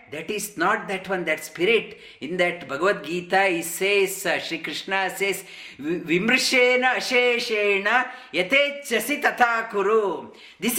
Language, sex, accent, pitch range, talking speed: English, male, Indian, 200-275 Hz, 130 wpm